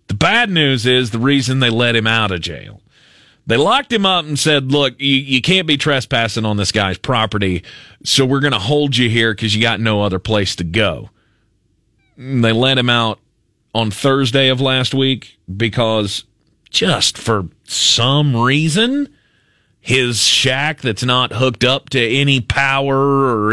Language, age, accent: English, 30-49, American